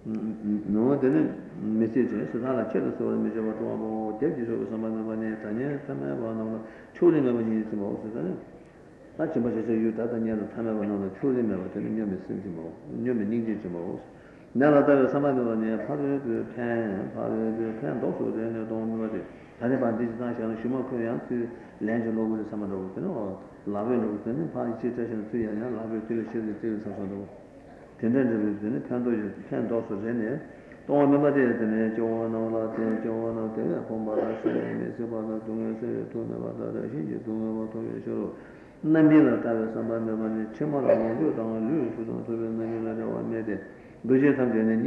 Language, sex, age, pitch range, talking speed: Italian, male, 60-79, 110-120 Hz, 95 wpm